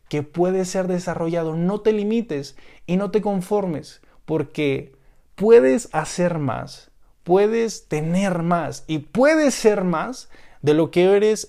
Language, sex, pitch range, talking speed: Spanish, male, 155-195 Hz, 135 wpm